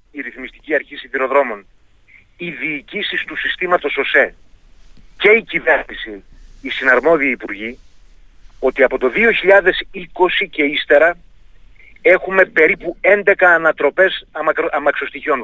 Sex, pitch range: male, 165-220 Hz